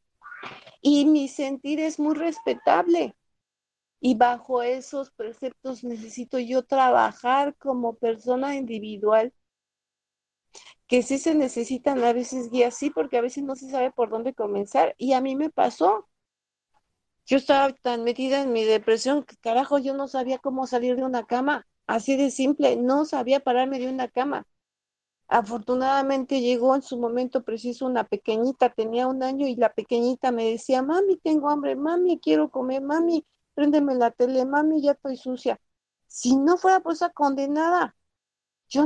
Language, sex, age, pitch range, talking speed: Spanish, female, 50-69, 250-300 Hz, 155 wpm